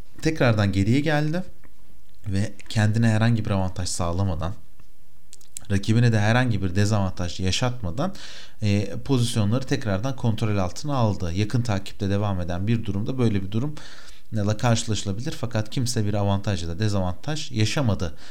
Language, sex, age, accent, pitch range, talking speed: Turkish, male, 40-59, native, 100-120 Hz, 130 wpm